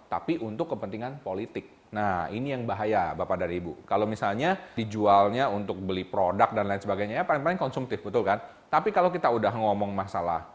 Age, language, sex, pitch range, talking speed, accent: 30-49, Indonesian, male, 105-165 Hz, 175 wpm, native